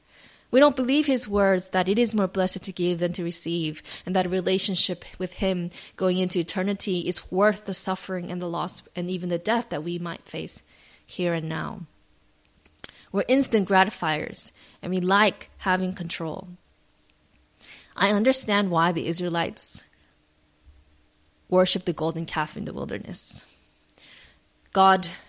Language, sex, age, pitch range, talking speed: English, female, 20-39, 175-205 Hz, 150 wpm